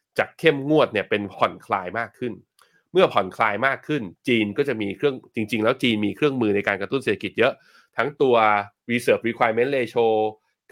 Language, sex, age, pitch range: Thai, male, 20-39, 105-145 Hz